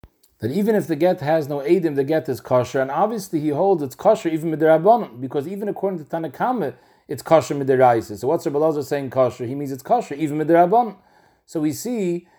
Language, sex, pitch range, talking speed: English, male, 150-195 Hz, 205 wpm